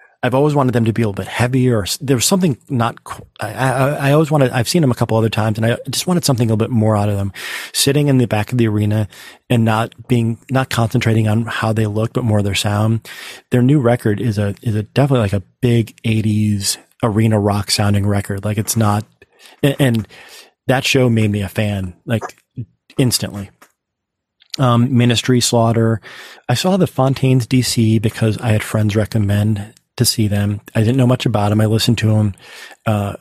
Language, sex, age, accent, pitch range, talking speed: English, male, 30-49, American, 105-120 Hz, 210 wpm